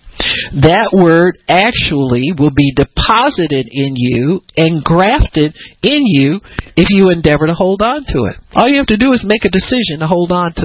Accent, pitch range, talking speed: American, 160-225 Hz, 185 wpm